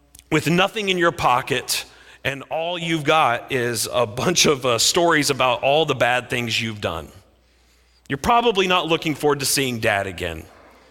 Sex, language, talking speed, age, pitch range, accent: male, English, 170 wpm, 40-59, 95-150 Hz, American